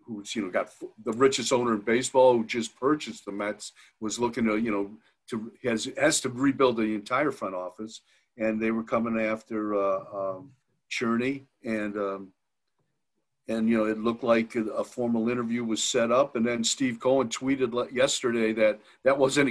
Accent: American